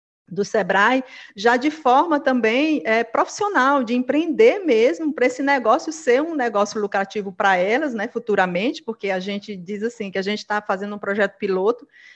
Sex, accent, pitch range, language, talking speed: female, Brazilian, 210-275 Hz, Portuguese, 170 wpm